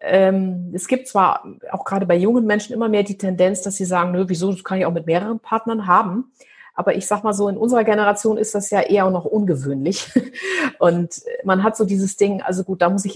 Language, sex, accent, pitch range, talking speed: German, female, German, 180-220 Hz, 230 wpm